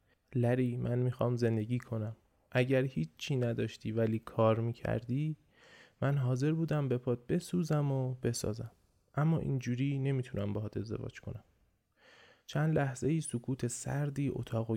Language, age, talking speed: Persian, 20-39, 125 wpm